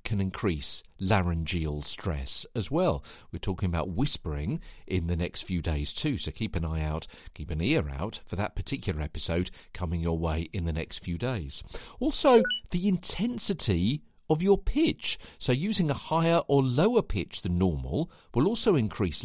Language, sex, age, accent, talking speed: English, male, 50-69, British, 170 wpm